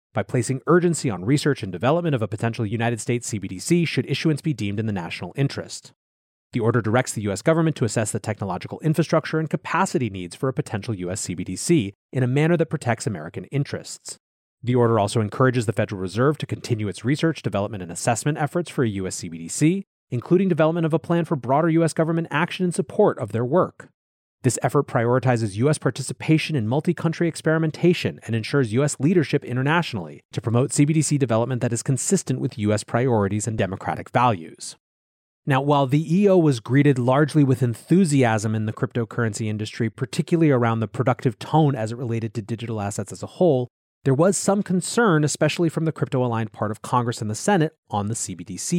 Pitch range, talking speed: 110-155 Hz, 185 wpm